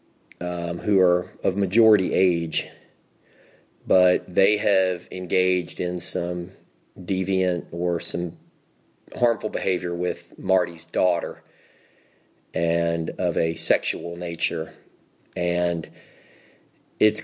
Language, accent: English, American